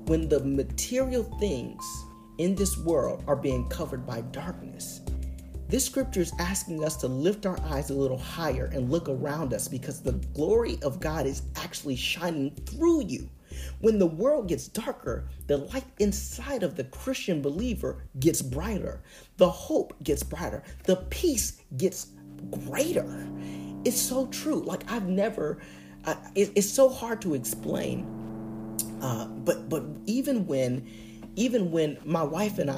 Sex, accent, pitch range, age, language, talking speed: male, American, 125-205 Hz, 40-59, English, 150 wpm